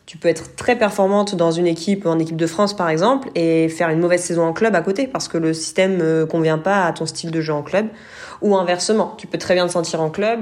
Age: 20-39